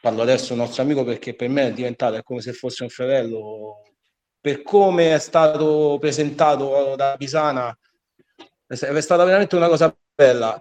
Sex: male